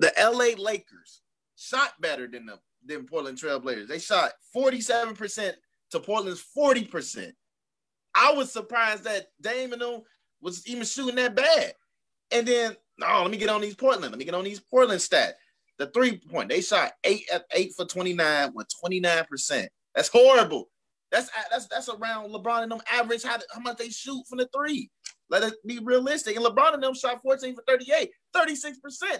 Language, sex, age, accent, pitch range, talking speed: English, male, 30-49, American, 200-255 Hz, 165 wpm